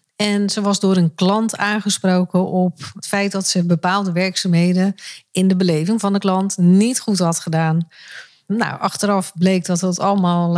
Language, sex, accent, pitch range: Dutch, female, Dutch, 180-210 Hz